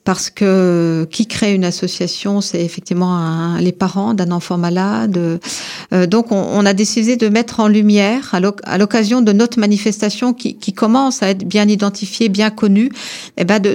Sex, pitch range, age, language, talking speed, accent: female, 180-215 Hz, 50-69, French, 190 wpm, French